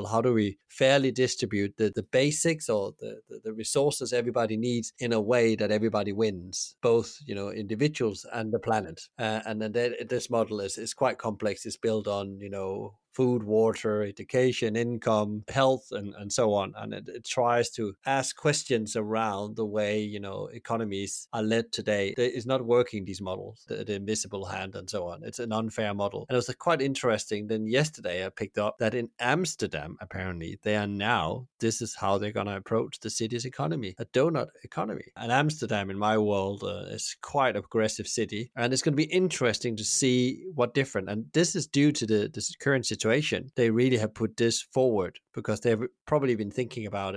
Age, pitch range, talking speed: 30-49, 105-125 Hz, 195 wpm